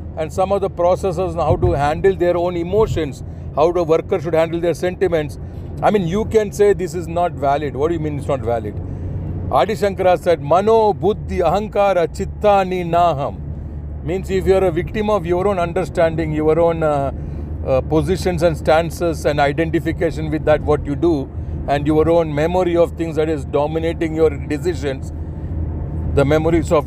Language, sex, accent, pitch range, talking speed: English, male, Indian, 115-180 Hz, 185 wpm